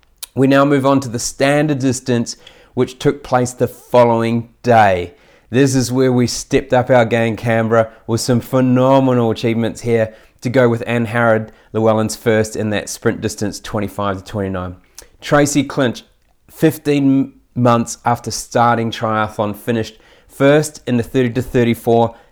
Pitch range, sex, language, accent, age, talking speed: 115-135 Hz, male, English, Australian, 30-49, 150 wpm